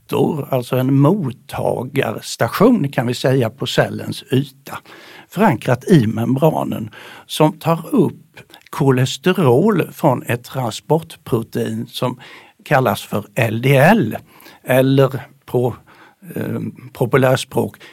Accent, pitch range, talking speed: Swedish, 125-160 Hz, 85 wpm